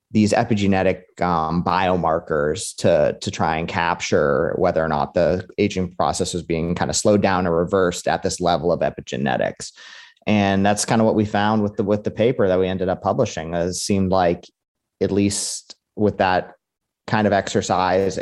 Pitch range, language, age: 85-100 Hz, English, 30-49